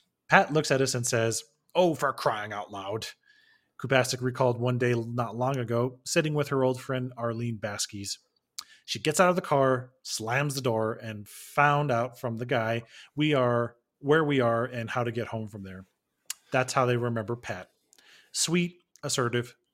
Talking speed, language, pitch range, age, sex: 180 wpm, English, 115-140 Hz, 30-49, male